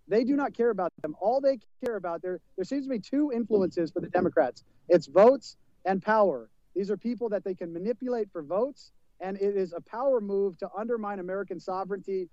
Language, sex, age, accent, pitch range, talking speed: English, male, 40-59, American, 180-225 Hz, 210 wpm